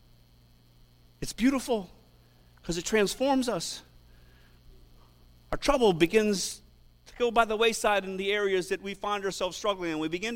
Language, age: English, 50-69